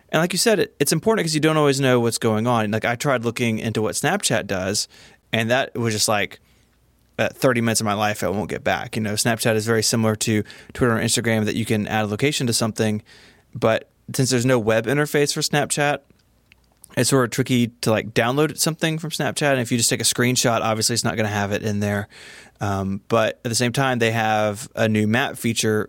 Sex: male